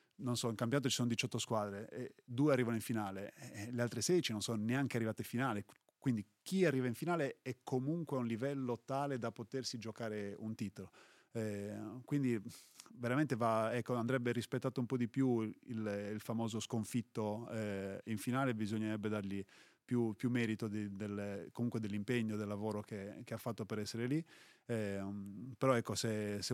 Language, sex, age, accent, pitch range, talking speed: Italian, male, 30-49, native, 105-120 Hz, 180 wpm